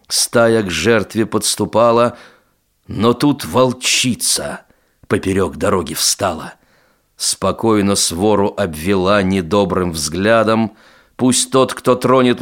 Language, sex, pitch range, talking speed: Russian, male, 100-125 Hz, 90 wpm